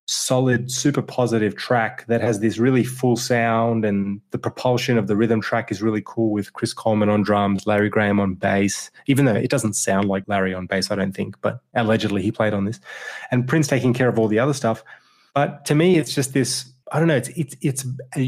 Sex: male